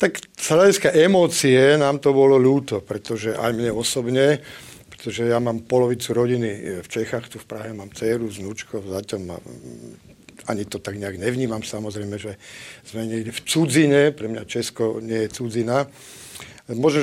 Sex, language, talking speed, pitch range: male, Czech, 150 wpm, 115-145 Hz